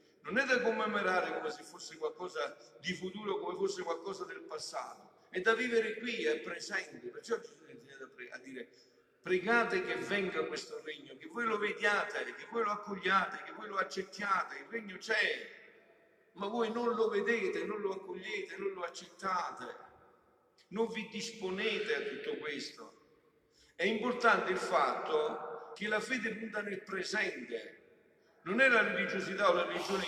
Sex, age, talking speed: male, 50-69, 160 wpm